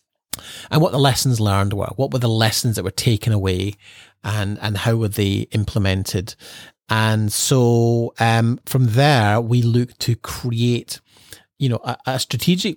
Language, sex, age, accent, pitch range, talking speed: English, male, 30-49, British, 105-130 Hz, 160 wpm